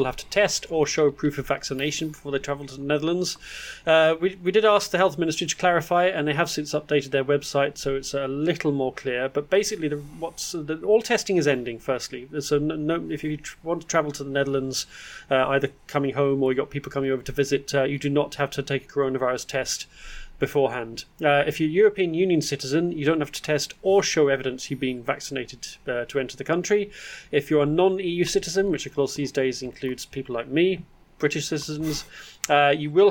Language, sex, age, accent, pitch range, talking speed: English, male, 30-49, British, 135-160 Hz, 220 wpm